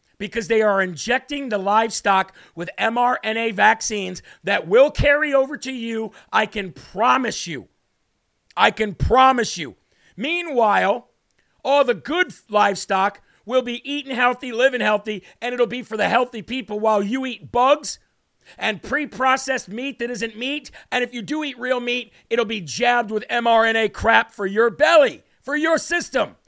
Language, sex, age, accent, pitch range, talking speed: English, male, 50-69, American, 210-260 Hz, 160 wpm